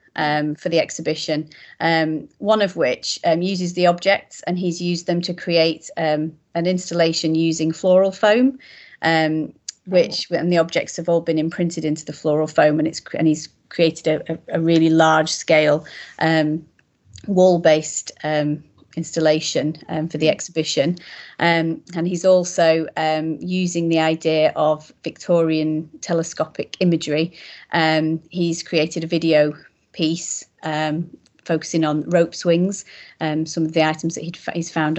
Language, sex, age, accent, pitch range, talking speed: English, female, 30-49, British, 160-175 Hz, 155 wpm